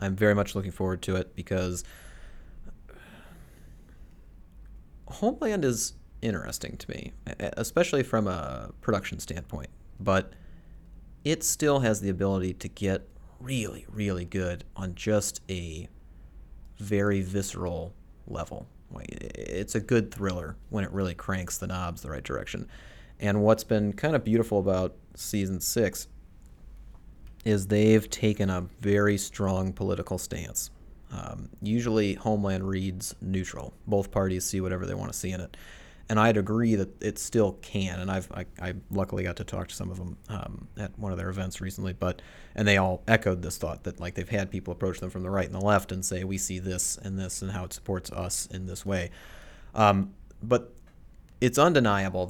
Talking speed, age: 165 wpm, 30-49